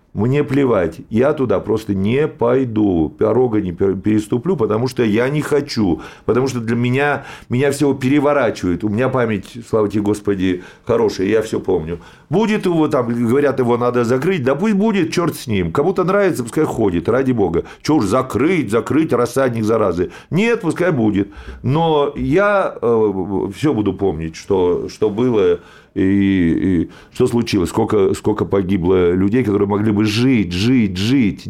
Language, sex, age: Russian, male, 40-59